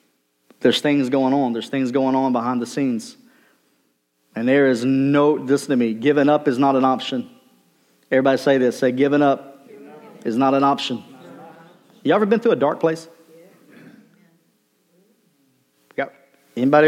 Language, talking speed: English, 150 wpm